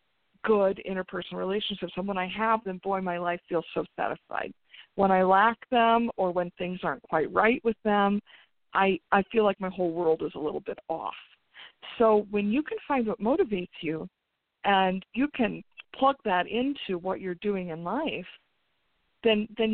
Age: 50-69